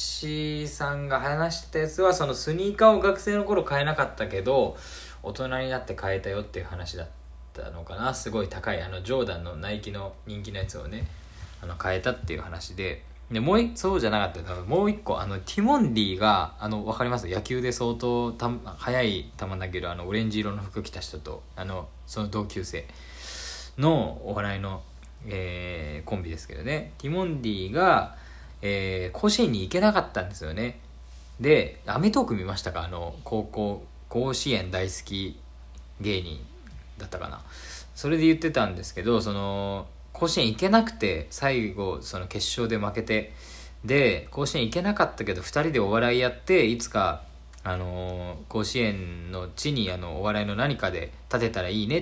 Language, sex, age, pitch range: Japanese, male, 20-39, 85-120 Hz